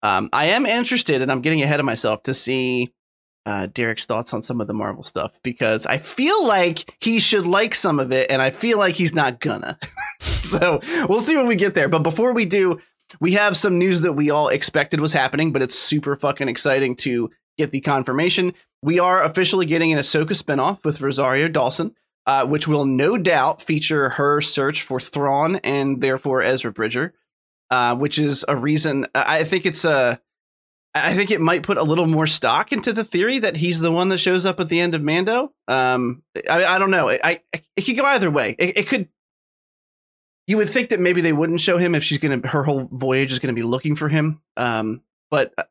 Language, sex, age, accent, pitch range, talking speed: English, male, 30-49, American, 130-180 Hz, 215 wpm